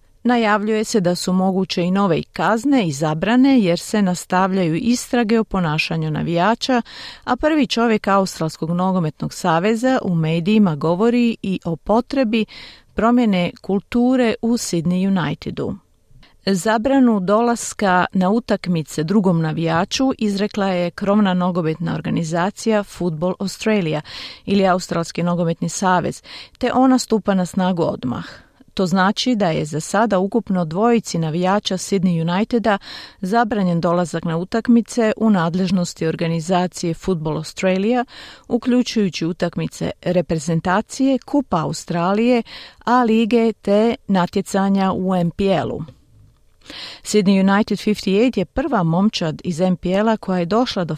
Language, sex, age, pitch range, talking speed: Croatian, female, 40-59, 175-220 Hz, 120 wpm